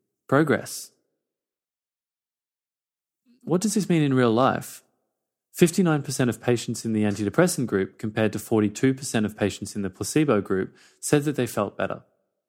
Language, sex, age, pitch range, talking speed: English, male, 20-39, 105-135 Hz, 140 wpm